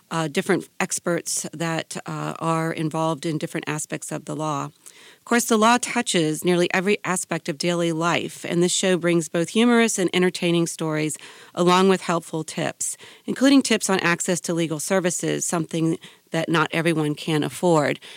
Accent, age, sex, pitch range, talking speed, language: American, 40-59, female, 155-180 Hz, 165 wpm, English